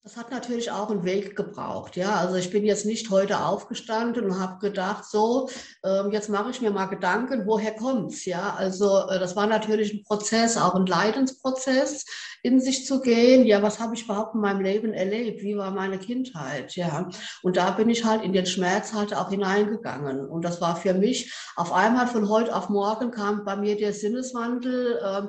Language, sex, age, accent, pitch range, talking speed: German, female, 60-79, German, 195-240 Hz, 195 wpm